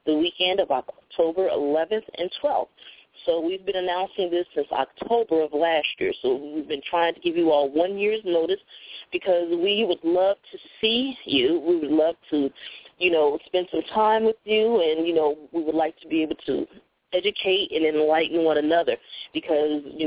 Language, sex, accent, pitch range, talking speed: English, female, American, 160-250 Hz, 190 wpm